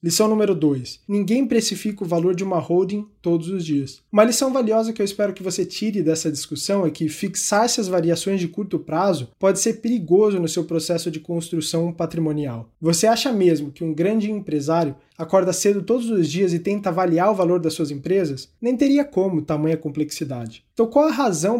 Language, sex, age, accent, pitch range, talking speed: Portuguese, male, 20-39, Brazilian, 160-210 Hz, 195 wpm